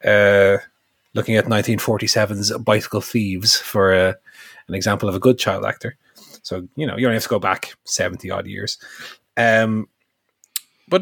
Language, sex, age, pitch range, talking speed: English, male, 30-49, 100-140 Hz, 160 wpm